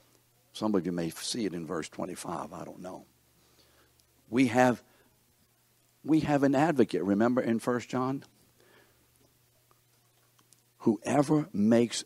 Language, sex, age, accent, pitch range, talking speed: English, male, 60-79, American, 100-125 Hz, 120 wpm